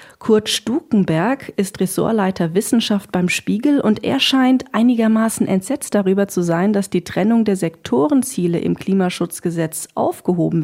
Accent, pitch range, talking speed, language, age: German, 180-230 Hz, 130 wpm, German, 40-59